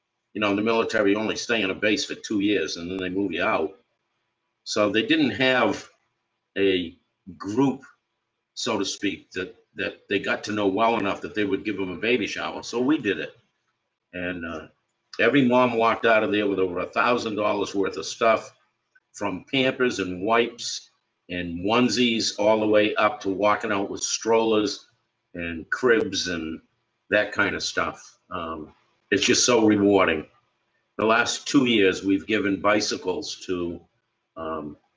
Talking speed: 170 wpm